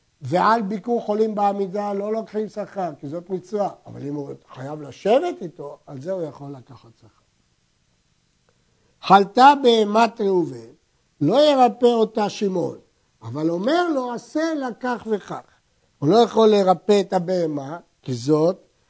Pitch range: 155-225 Hz